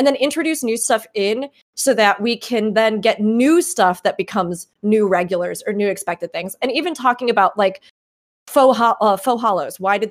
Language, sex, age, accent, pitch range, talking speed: English, female, 20-39, American, 195-245 Hz, 200 wpm